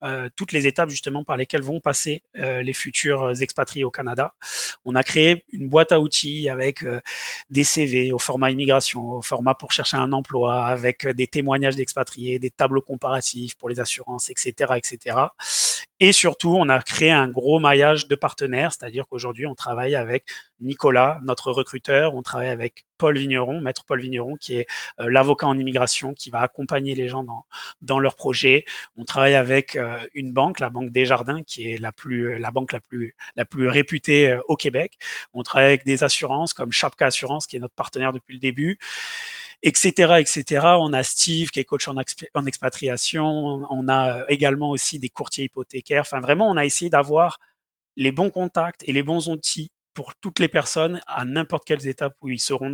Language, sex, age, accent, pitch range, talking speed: French, male, 30-49, French, 130-150 Hz, 195 wpm